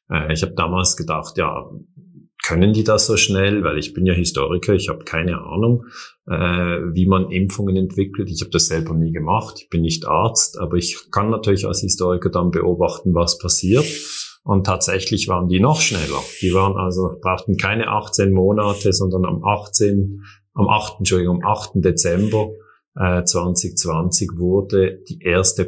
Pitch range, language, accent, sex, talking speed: 85-100 Hz, German, German, male, 165 wpm